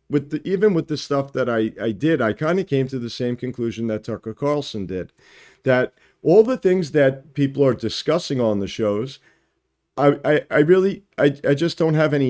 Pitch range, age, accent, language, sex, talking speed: 95-145 Hz, 50-69, American, English, male, 210 wpm